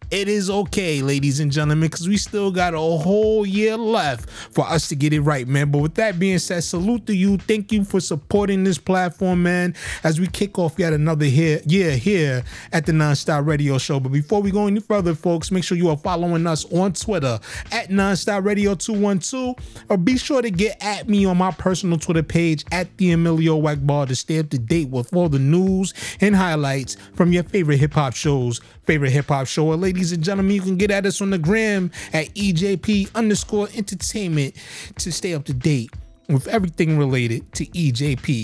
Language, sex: English, male